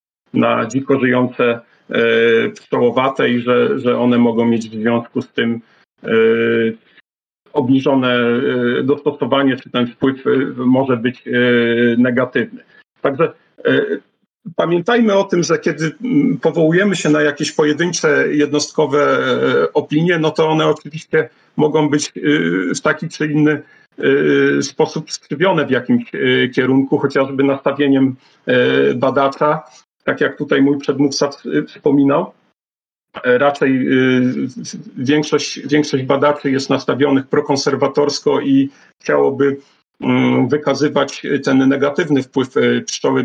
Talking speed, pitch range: 105 wpm, 130-155 Hz